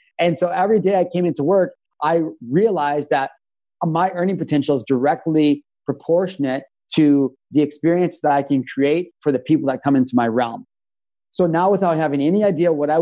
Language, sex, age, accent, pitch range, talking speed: English, male, 30-49, American, 135-170 Hz, 185 wpm